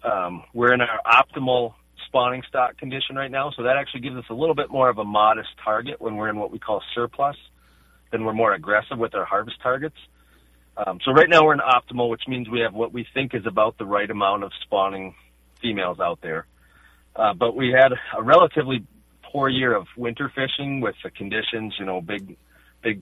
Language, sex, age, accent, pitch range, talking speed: English, male, 40-59, American, 95-130 Hz, 210 wpm